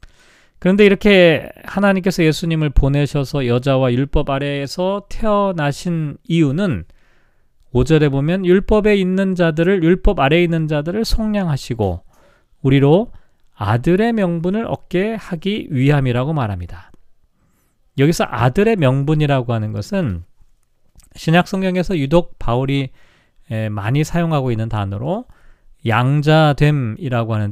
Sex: male